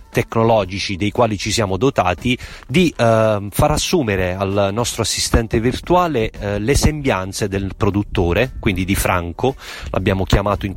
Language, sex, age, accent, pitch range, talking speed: Italian, male, 30-49, native, 100-130 Hz, 140 wpm